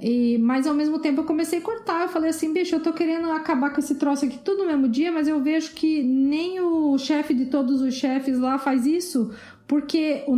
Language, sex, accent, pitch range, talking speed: Portuguese, female, Brazilian, 235-300 Hz, 230 wpm